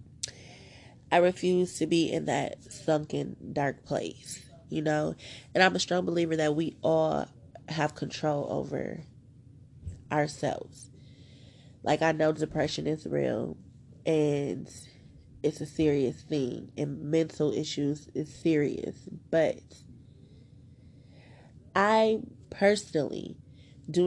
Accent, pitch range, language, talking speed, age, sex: American, 130-160 Hz, English, 105 wpm, 20-39, female